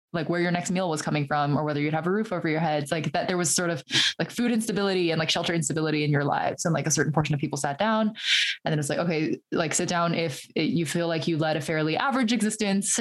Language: English